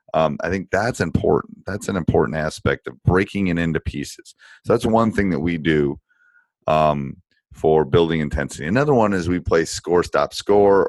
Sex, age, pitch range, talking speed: male, 30-49, 75-100 Hz, 180 wpm